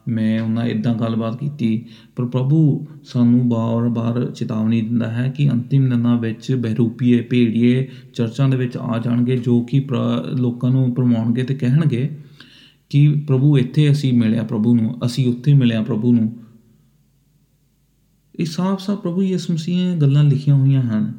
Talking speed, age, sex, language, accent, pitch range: 125 wpm, 30-49, male, English, Indian, 120-140 Hz